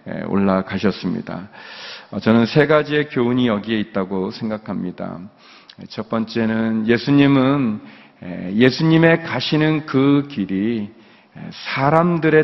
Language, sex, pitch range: Korean, male, 105-135 Hz